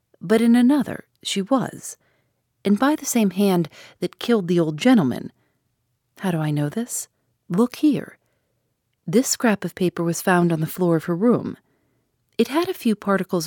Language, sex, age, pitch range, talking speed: English, female, 40-59, 140-230 Hz, 175 wpm